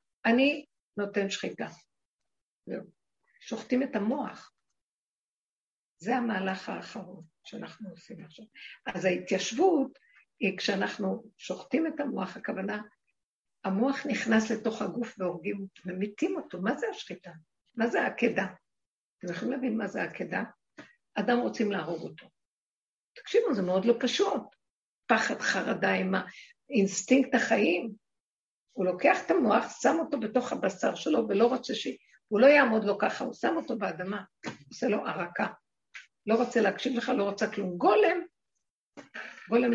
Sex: female